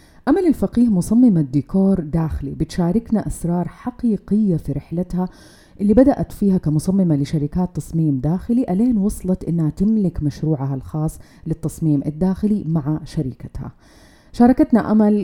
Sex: female